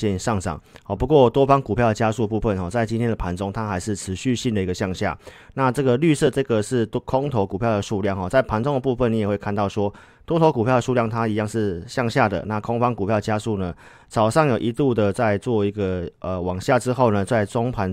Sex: male